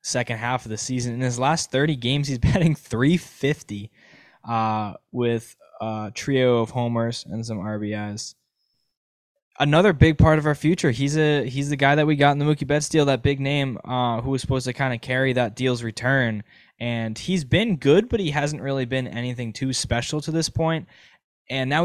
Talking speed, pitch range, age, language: 200 wpm, 110-145 Hz, 10-29, English